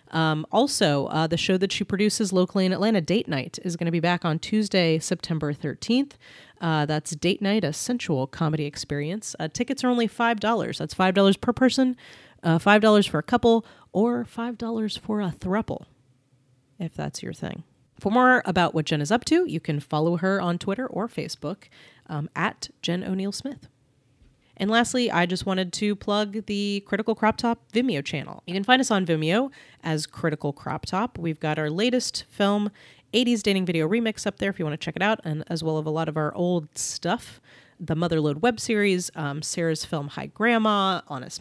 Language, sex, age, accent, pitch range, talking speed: English, female, 30-49, American, 160-215 Hz, 195 wpm